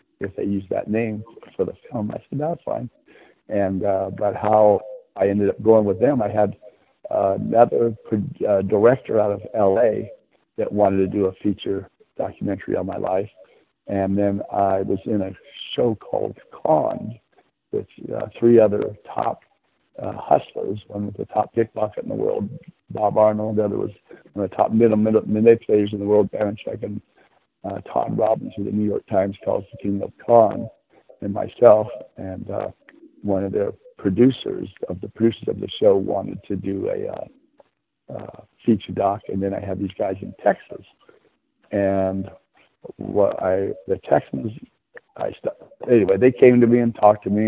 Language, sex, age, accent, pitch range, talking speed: English, male, 60-79, American, 100-115 Hz, 180 wpm